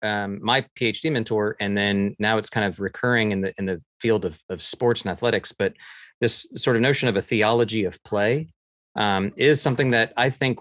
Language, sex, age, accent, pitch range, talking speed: English, male, 30-49, American, 105-130 Hz, 210 wpm